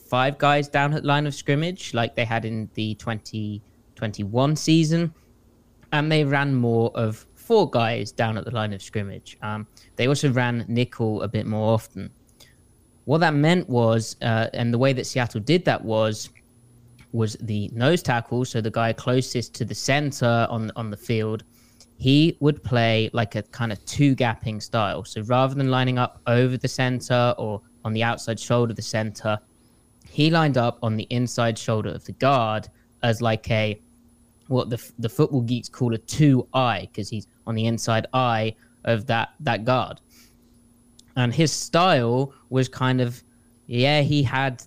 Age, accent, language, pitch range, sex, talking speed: 20-39, British, English, 115-130 Hz, male, 175 wpm